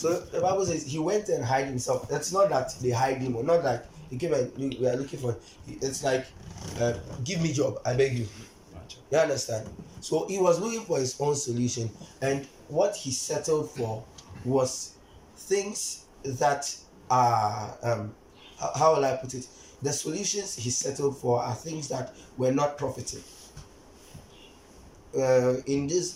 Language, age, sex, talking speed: English, 20-39, male, 165 wpm